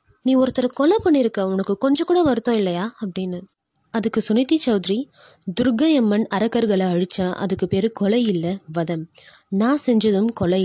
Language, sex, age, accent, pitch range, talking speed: Tamil, female, 20-39, native, 195-275 Hz, 135 wpm